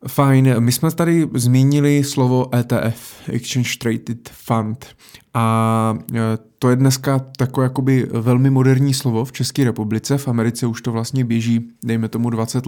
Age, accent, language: 20-39, native, Czech